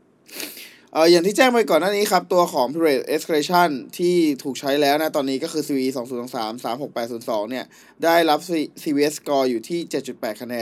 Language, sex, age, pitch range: Thai, male, 20-39, 135-170 Hz